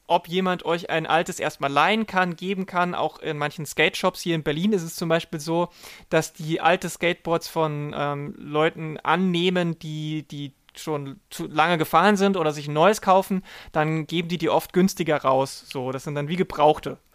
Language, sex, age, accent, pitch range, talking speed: German, male, 30-49, German, 160-195 Hz, 190 wpm